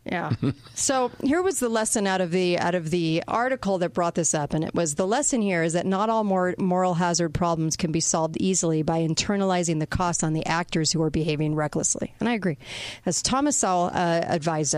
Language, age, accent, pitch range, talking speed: English, 40-59, American, 170-200 Hz, 215 wpm